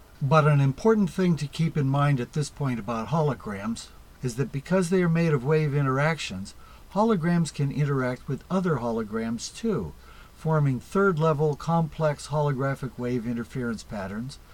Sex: male